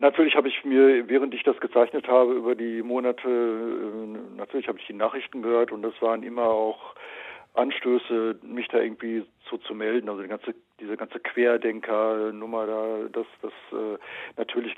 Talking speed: 160 wpm